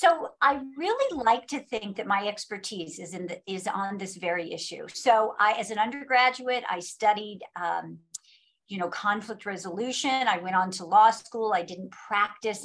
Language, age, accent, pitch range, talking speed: English, 50-69, American, 185-240 Hz, 180 wpm